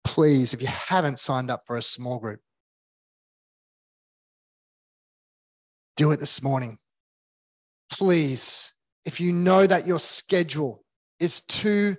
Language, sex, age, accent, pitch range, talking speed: English, male, 20-39, Australian, 120-175 Hz, 115 wpm